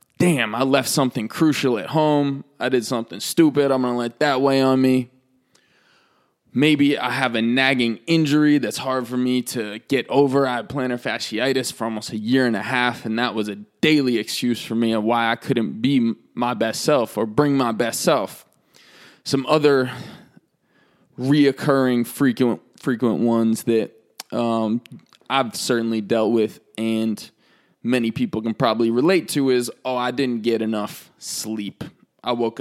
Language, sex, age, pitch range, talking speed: English, male, 20-39, 115-140 Hz, 165 wpm